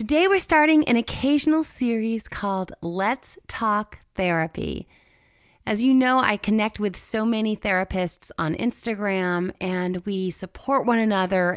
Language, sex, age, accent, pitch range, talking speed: English, female, 30-49, American, 195-255 Hz, 135 wpm